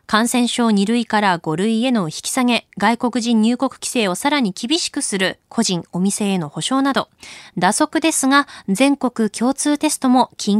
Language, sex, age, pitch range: Japanese, female, 20-39, 195-275 Hz